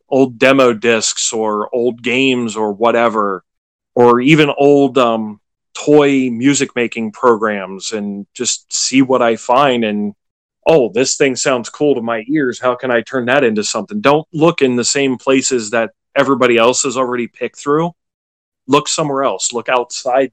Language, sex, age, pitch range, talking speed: English, male, 30-49, 115-135 Hz, 165 wpm